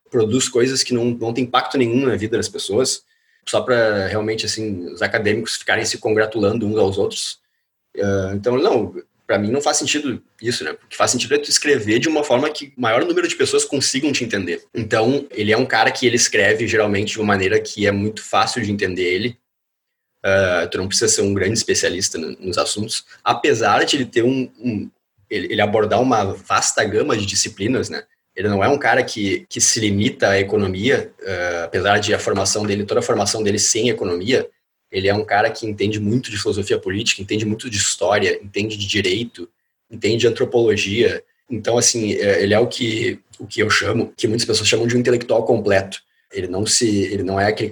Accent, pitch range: Brazilian, 100-135 Hz